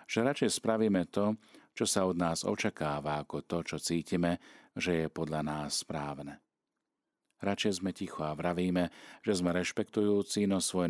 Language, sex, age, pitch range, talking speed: Slovak, male, 40-59, 80-95 Hz, 155 wpm